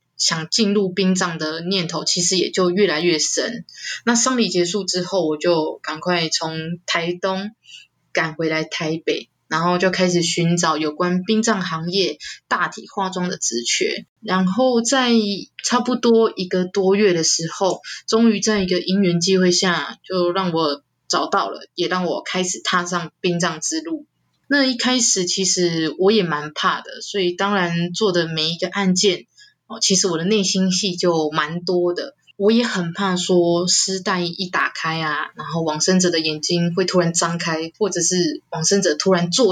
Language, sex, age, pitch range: Chinese, female, 20-39, 170-200 Hz